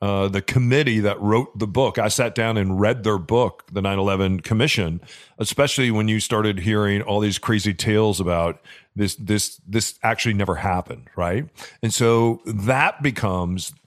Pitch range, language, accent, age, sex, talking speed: 105-140 Hz, English, American, 40-59, male, 165 wpm